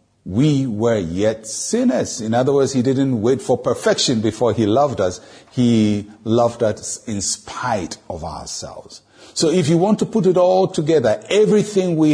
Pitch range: 100-140 Hz